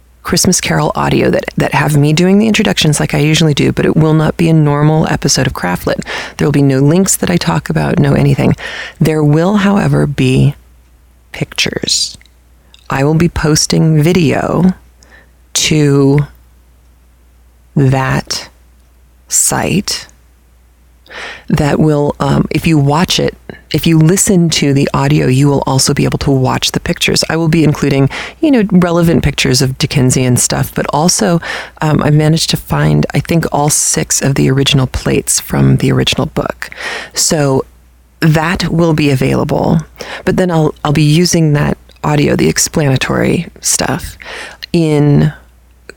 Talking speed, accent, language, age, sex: 155 wpm, American, English, 30-49, female